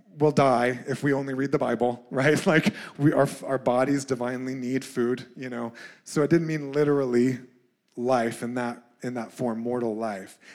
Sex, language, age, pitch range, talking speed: male, English, 30-49, 130-165 Hz, 180 wpm